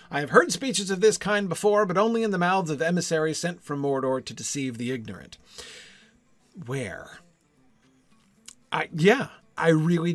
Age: 40-59